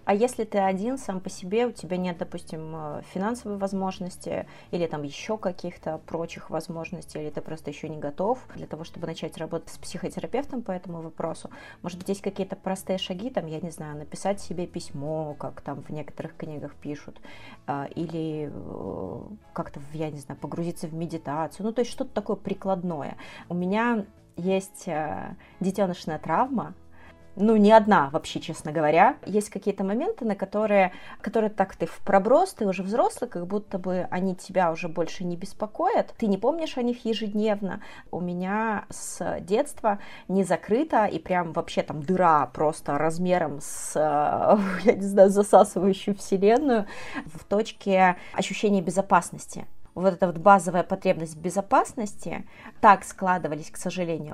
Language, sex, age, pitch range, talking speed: Russian, female, 30-49, 165-210 Hz, 155 wpm